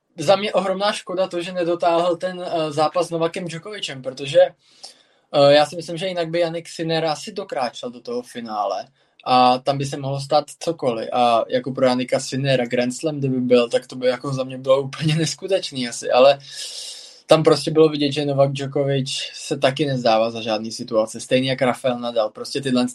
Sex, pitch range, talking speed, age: male, 130-160 Hz, 190 wpm, 20-39